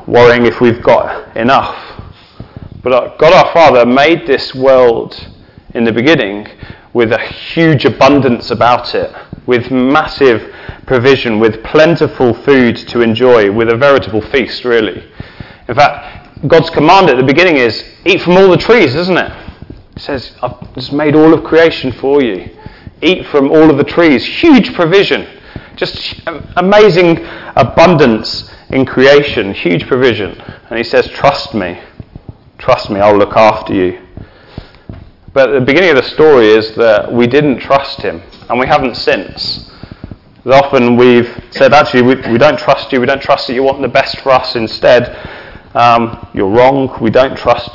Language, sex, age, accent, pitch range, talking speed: English, male, 30-49, British, 115-140 Hz, 160 wpm